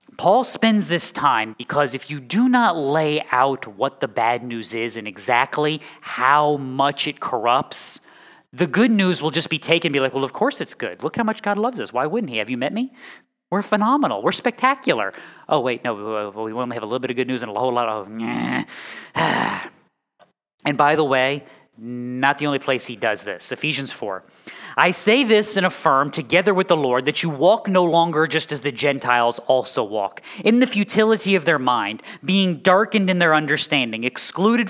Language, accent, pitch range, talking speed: English, American, 130-185 Hz, 200 wpm